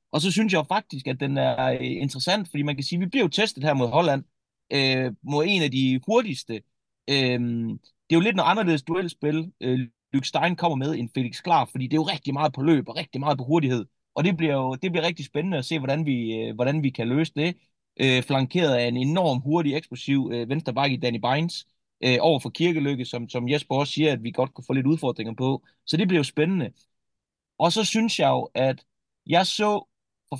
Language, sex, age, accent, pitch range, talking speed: Danish, male, 30-49, native, 125-160 Hz, 230 wpm